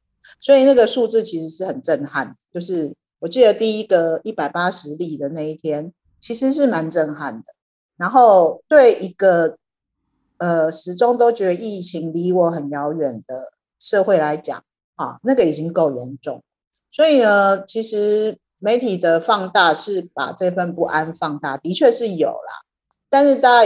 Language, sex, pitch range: Chinese, female, 155-225 Hz